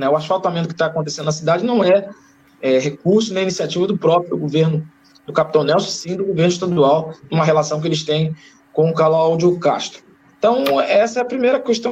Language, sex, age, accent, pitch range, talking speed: Portuguese, male, 20-39, Brazilian, 170-230 Hz, 190 wpm